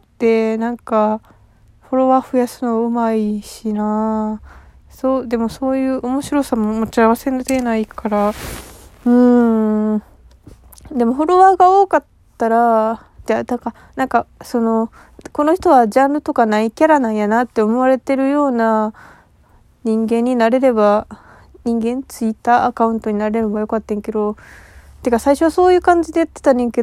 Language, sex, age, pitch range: Japanese, female, 20-39, 220-260 Hz